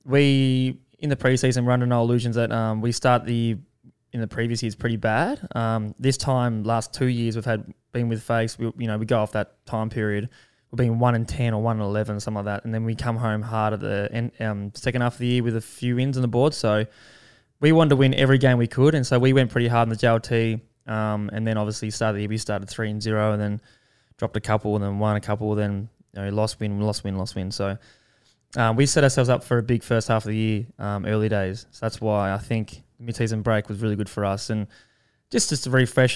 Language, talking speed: English, 255 wpm